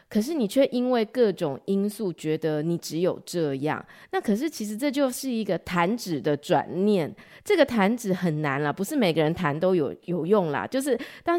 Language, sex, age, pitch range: Chinese, female, 30-49, 170-245 Hz